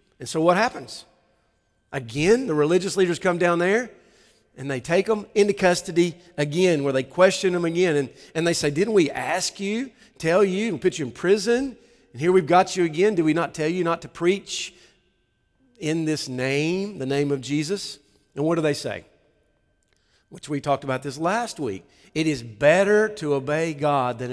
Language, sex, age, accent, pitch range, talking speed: English, male, 50-69, American, 140-180 Hz, 190 wpm